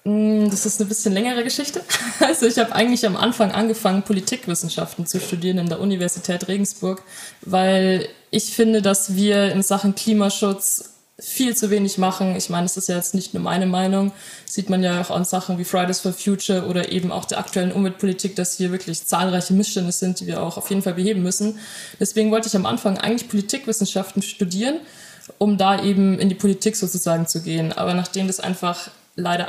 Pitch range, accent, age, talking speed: 185-215 Hz, German, 20-39, 190 wpm